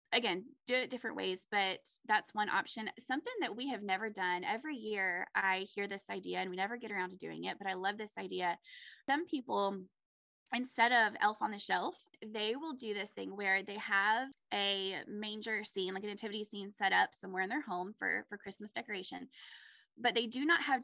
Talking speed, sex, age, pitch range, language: 205 wpm, female, 20-39, 195-260 Hz, English